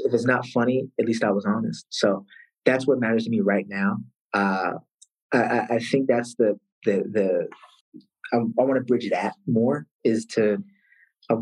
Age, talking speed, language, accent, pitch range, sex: 20-39, 185 wpm, English, American, 105-155 Hz, male